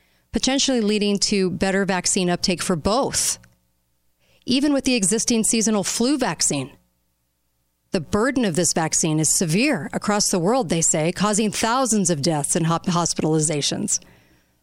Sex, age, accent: female, 40-59, American